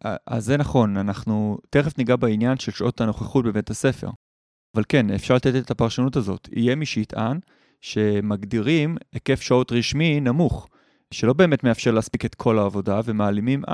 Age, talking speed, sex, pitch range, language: 20-39, 155 wpm, male, 110-135 Hz, Hebrew